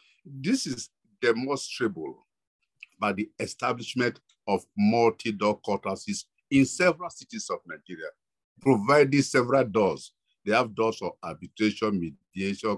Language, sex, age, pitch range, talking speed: English, male, 50-69, 105-160 Hz, 110 wpm